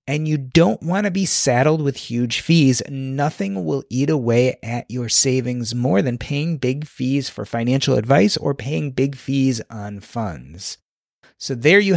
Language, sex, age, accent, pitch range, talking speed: English, male, 30-49, American, 125-160 Hz, 170 wpm